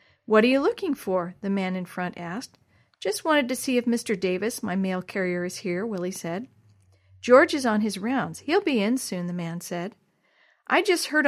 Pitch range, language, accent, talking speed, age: 185-260 Hz, English, American, 205 wpm, 50-69